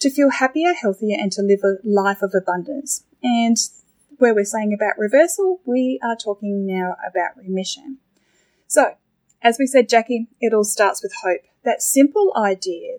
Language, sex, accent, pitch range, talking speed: English, female, Australian, 200-250 Hz, 165 wpm